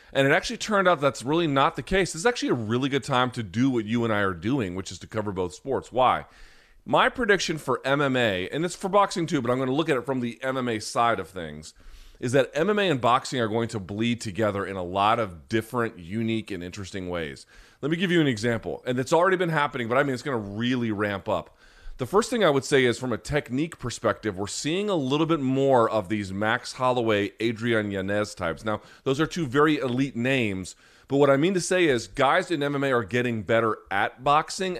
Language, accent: English, American